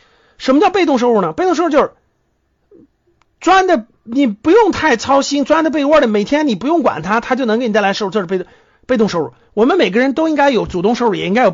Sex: male